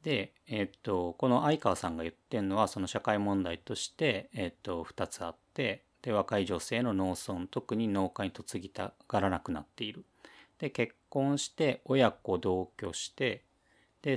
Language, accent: Japanese, native